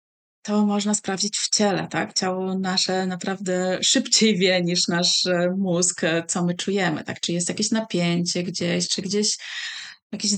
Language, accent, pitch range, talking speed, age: Polish, native, 180-230 Hz, 150 wpm, 20-39